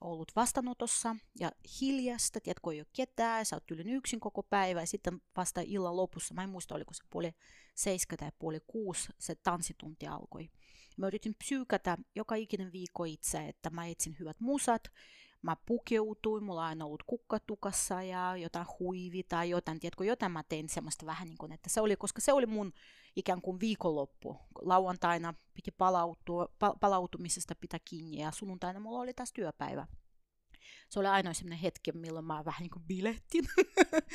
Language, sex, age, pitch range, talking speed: Finnish, female, 30-49, 170-220 Hz, 165 wpm